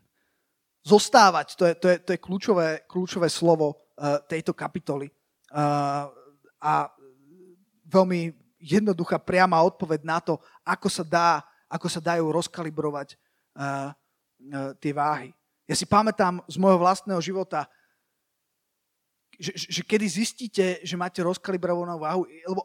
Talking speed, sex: 125 wpm, male